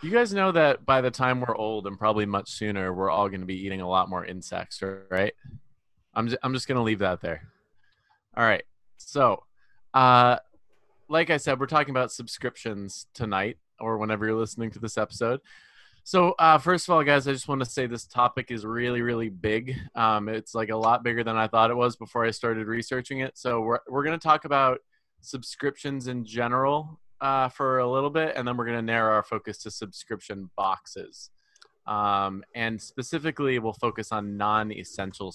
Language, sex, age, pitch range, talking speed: English, male, 20-39, 110-135 Hz, 190 wpm